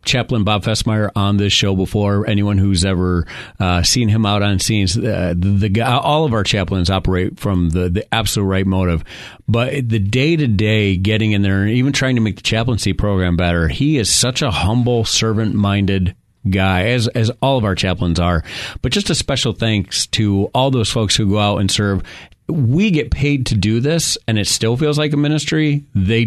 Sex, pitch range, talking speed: male, 95-120 Hz, 210 wpm